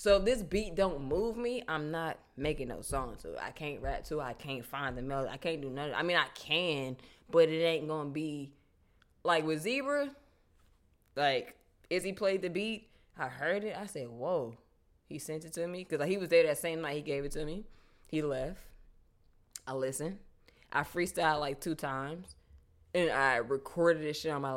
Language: English